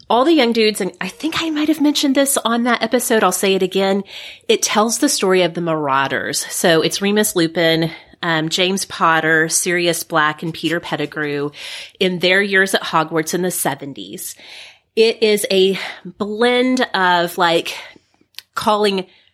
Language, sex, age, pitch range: English, female, 30-49, 165-245 Hz